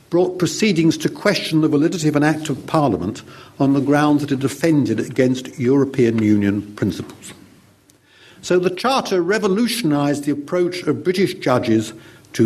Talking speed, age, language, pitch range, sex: 150 wpm, 50-69, English, 115-160 Hz, male